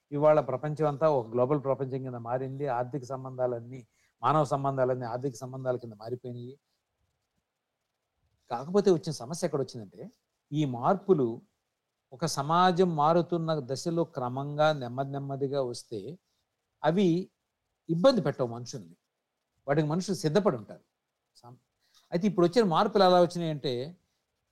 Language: Telugu